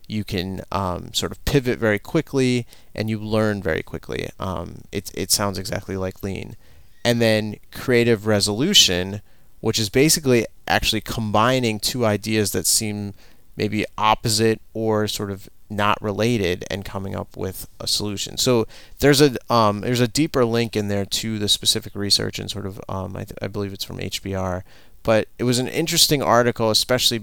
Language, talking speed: English, 165 wpm